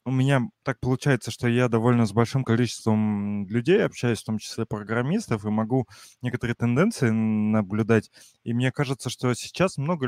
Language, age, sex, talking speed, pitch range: Russian, 20-39, male, 160 wpm, 110-130 Hz